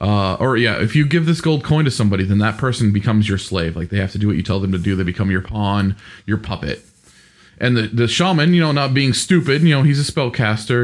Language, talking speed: English, 265 wpm